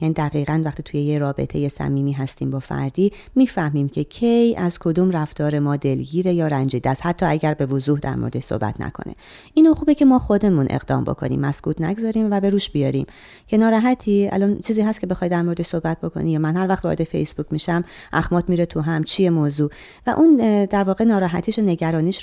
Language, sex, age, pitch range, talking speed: Persian, female, 30-49, 150-195 Hz, 195 wpm